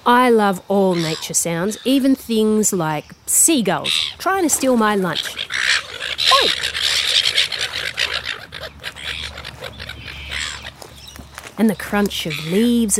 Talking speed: 90 wpm